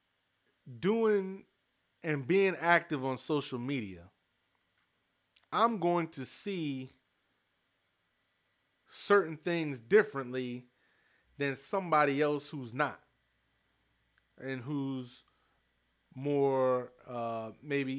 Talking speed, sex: 80 wpm, male